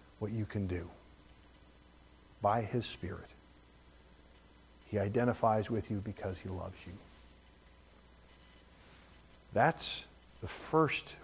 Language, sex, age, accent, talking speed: English, male, 50-69, American, 95 wpm